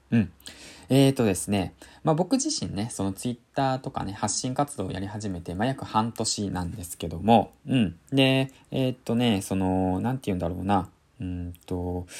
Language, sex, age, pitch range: Japanese, male, 20-39, 95-135 Hz